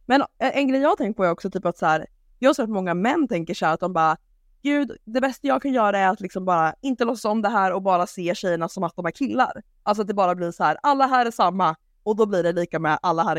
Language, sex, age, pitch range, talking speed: English, female, 20-39, 170-220 Hz, 285 wpm